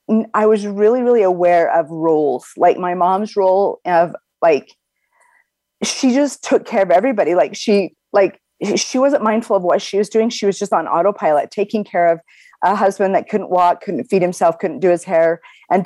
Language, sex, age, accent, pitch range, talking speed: English, female, 30-49, American, 170-210 Hz, 195 wpm